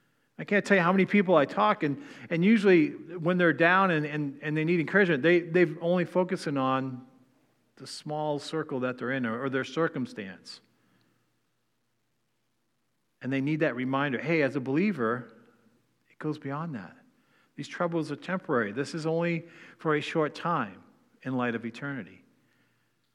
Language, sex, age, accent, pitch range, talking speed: English, male, 50-69, American, 125-165 Hz, 165 wpm